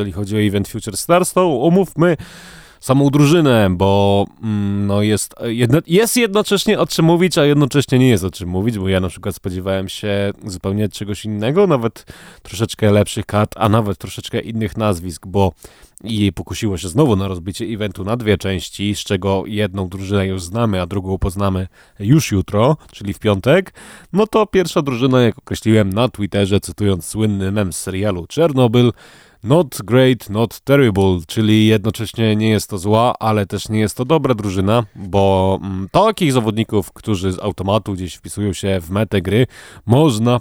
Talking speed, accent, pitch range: 170 wpm, native, 95-120 Hz